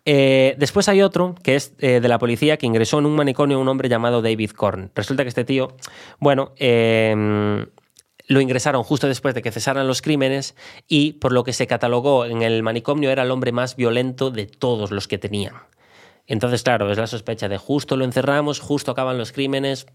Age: 20-39